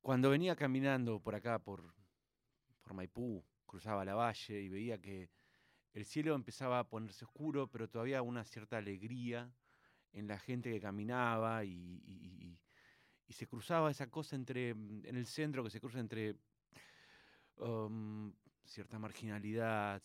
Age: 30-49